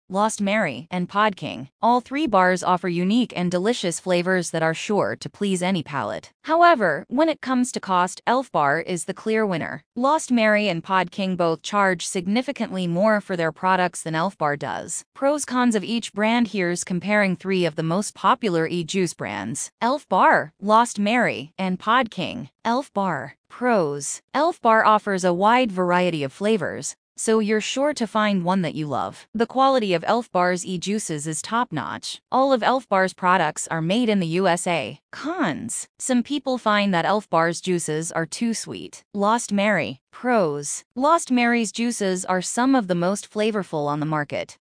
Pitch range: 175-235 Hz